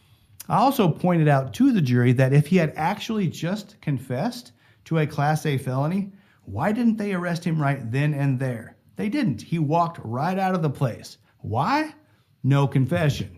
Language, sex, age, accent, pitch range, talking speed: English, male, 50-69, American, 135-185 Hz, 180 wpm